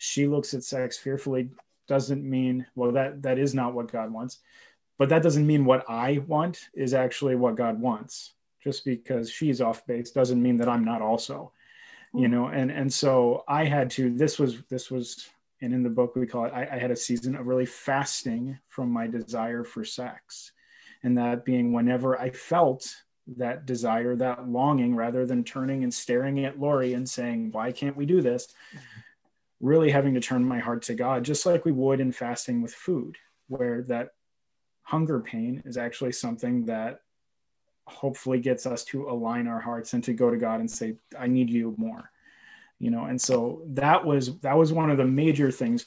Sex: male